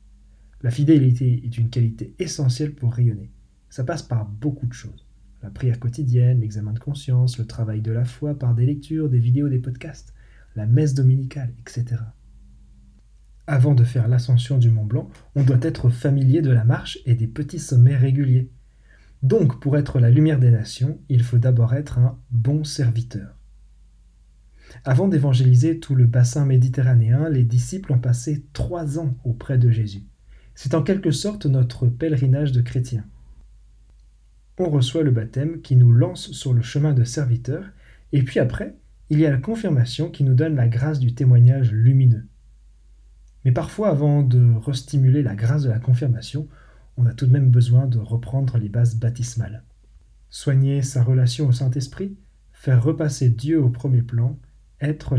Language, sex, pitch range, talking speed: French, male, 120-140 Hz, 165 wpm